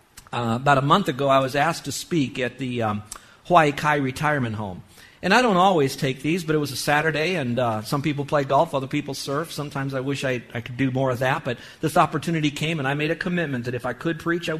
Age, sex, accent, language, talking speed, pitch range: 50-69, male, American, English, 255 wpm, 130-165 Hz